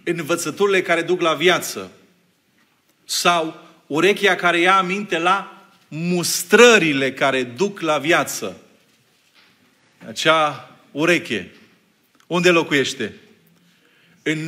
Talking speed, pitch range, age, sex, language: 85 wpm, 160-195 Hz, 40-59, male, Romanian